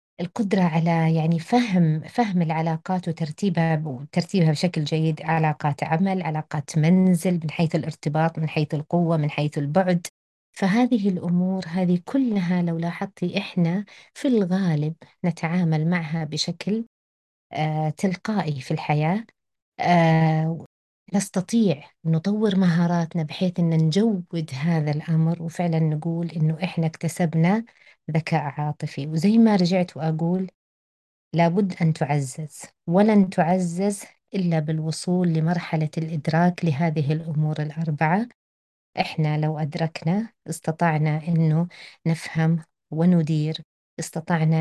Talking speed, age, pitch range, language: 100 wpm, 30-49, 155-180 Hz, Arabic